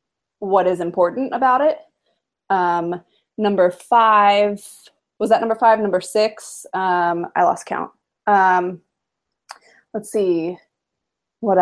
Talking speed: 115 wpm